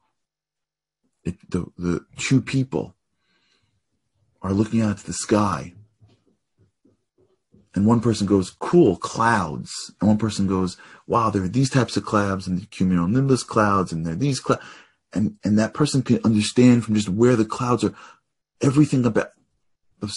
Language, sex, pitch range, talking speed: English, male, 90-115 Hz, 155 wpm